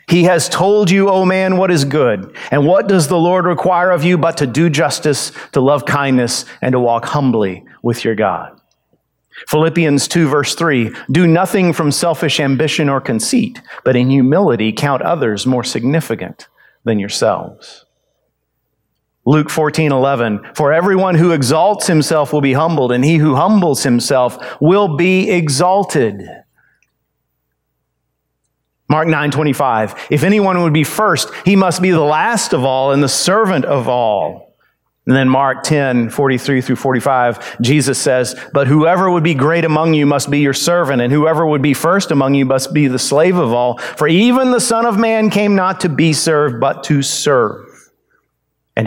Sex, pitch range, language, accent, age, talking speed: male, 125-170 Hz, English, American, 40-59, 170 wpm